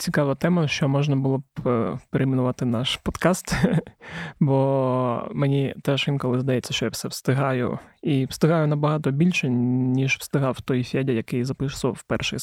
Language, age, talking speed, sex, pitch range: Ukrainian, 20-39, 140 wpm, male, 135-155 Hz